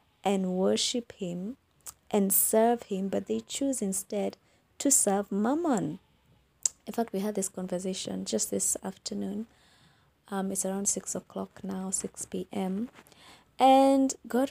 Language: English